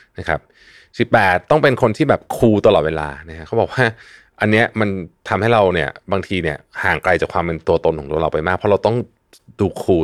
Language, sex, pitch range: Thai, male, 80-110 Hz